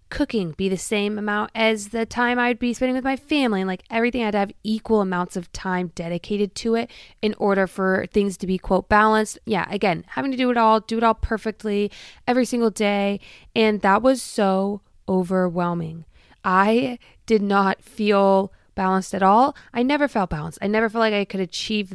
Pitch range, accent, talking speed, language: 185-220 Hz, American, 195 wpm, English